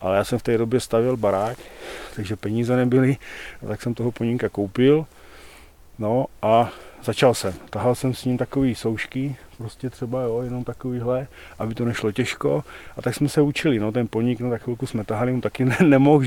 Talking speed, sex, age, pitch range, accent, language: 195 wpm, male, 40-59, 110-125 Hz, native, Czech